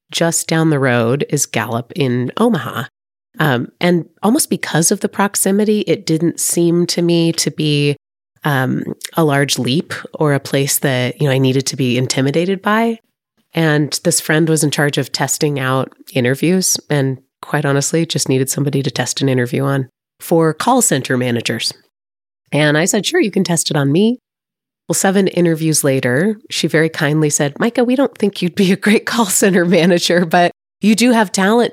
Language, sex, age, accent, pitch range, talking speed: English, female, 30-49, American, 145-210 Hz, 180 wpm